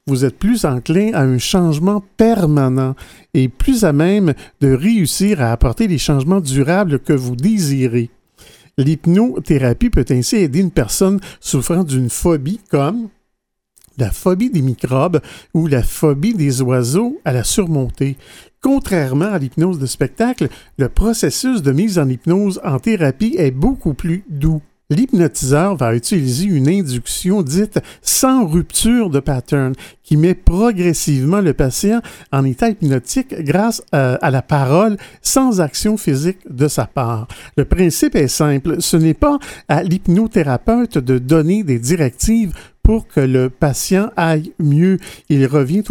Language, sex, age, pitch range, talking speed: French, male, 50-69, 135-195 Hz, 145 wpm